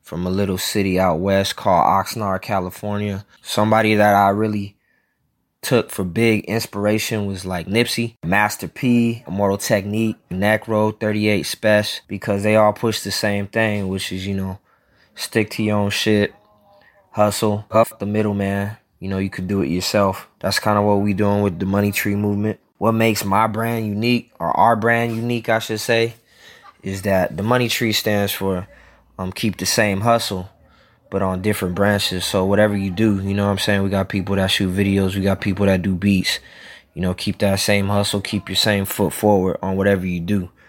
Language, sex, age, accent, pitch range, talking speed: English, male, 20-39, American, 95-110 Hz, 190 wpm